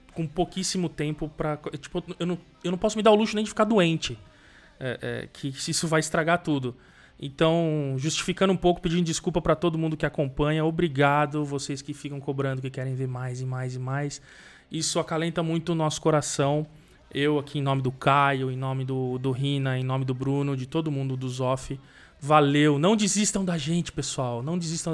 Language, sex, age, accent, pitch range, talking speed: Portuguese, male, 20-39, Brazilian, 145-190 Hz, 200 wpm